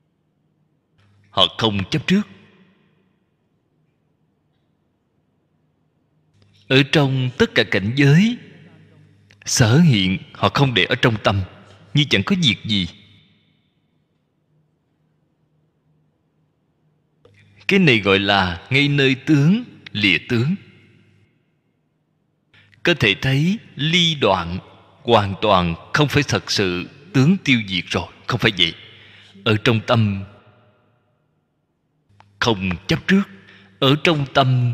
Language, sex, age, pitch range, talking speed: Vietnamese, male, 20-39, 100-155 Hz, 100 wpm